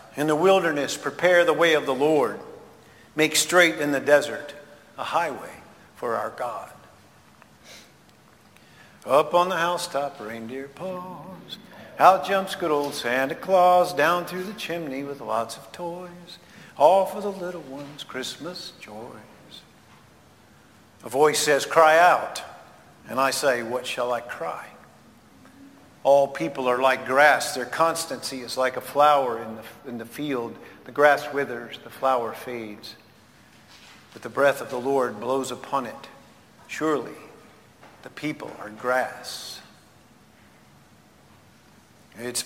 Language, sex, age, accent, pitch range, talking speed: English, male, 50-69, American, 135-190 Hz, 135 wpm